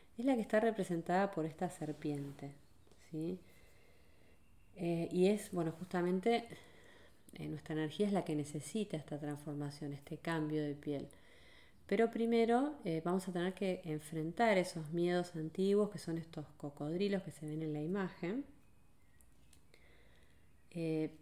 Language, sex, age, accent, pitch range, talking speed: Spanish, female, 30-49, Argentinian, 150-195 Hz, 135 wpm